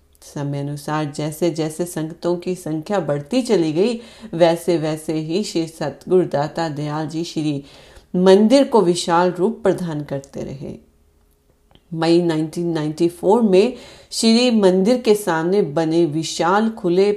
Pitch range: 155-195 Hz